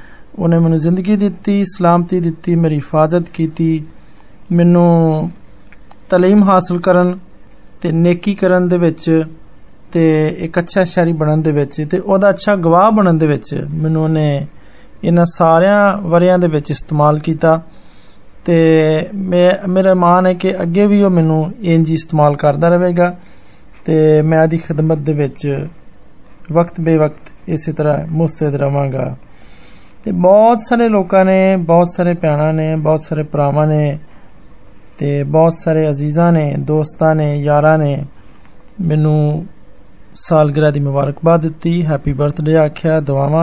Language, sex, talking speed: Hindi, male, 110 wpm